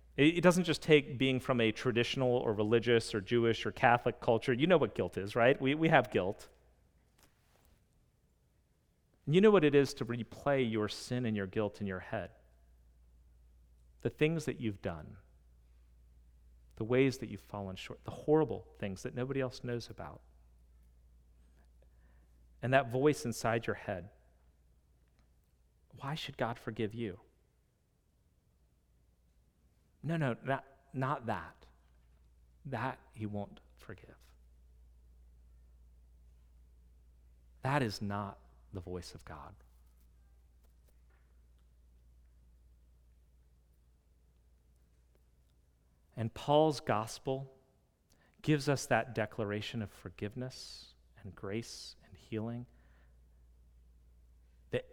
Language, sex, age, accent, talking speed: English, male, 40-59, American, 110 wpm